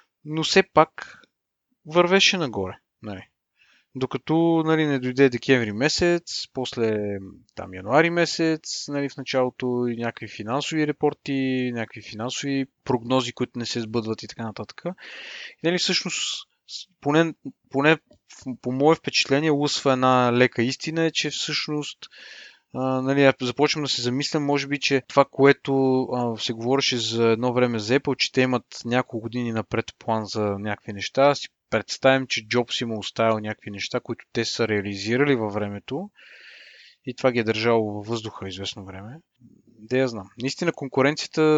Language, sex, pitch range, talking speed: Bulgarian, male, 115-150 Hz, 155 wpm